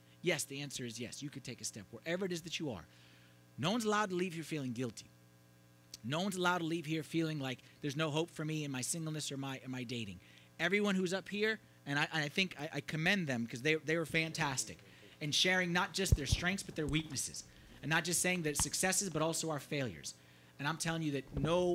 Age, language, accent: 30-49, English, American